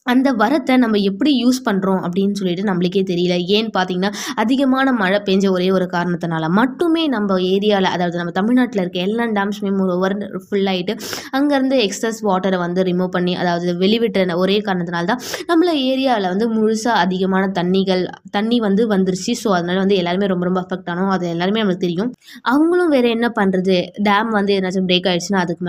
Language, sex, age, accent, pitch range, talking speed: Tamil, female, 20-39, native, 185-220 Hz, 160 wpm